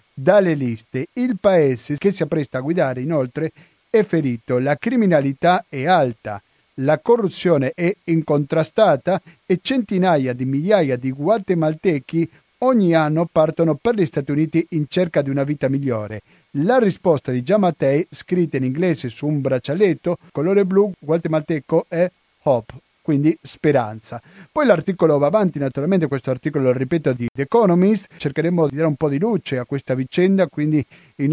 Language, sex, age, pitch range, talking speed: Italian, male, 40-59, 130-175 Hz, 155 wpm